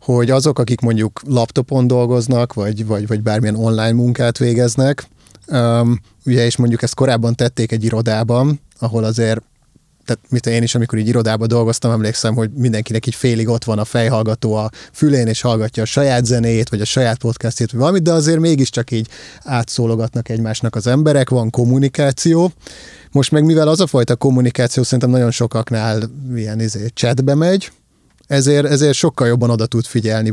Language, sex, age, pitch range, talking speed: Hungarian, male, 30-49, 115-140 Hz, 170 wpm